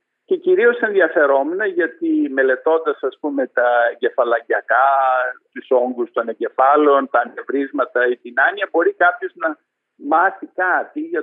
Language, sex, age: Greek, male, 50-69